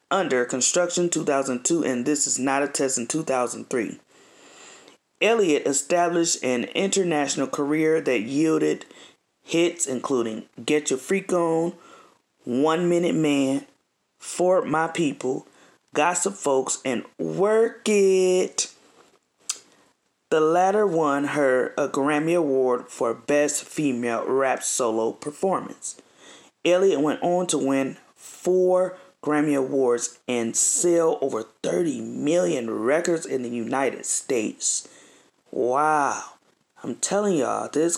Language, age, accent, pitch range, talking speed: English, 30-49, American, 140-185 Hz, 110 wpm